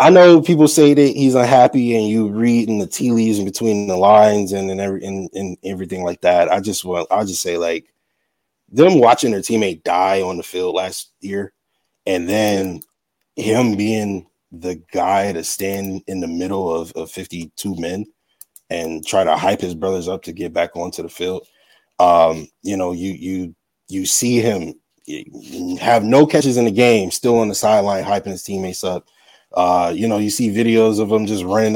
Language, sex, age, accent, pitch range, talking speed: English, male, 20-39, American, 95-125 Hz, 195 wpm